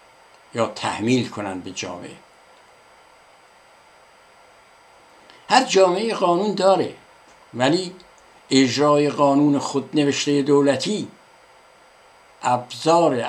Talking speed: 70 wpm